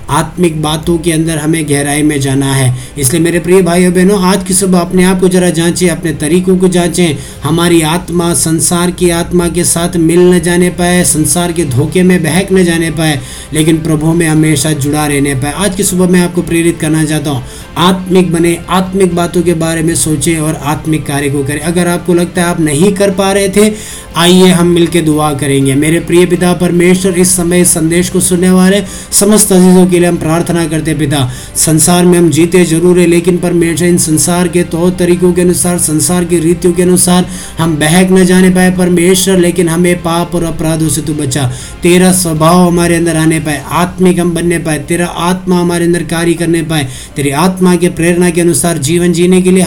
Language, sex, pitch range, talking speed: Hindi, male, 155-180 Hz, 145 wpm